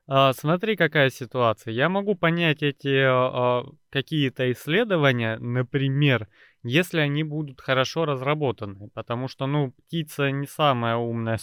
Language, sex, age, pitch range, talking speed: Russian, male, 20-39, 120-155 Hz, 115 wpm